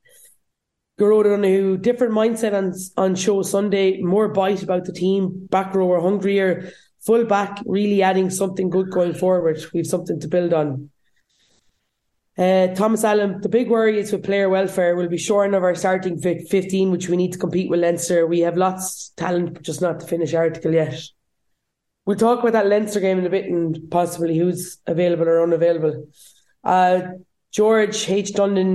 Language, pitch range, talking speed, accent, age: English, 175-195 Hz, 185 wpm, Irish, 20-39